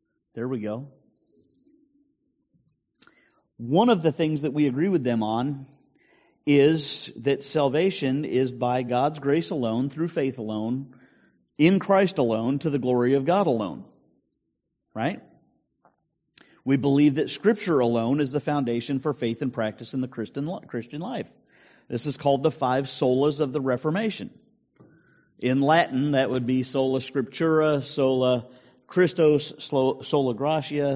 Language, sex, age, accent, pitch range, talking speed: English, male, 50-69, American, 125-155 Hz, 135 wpm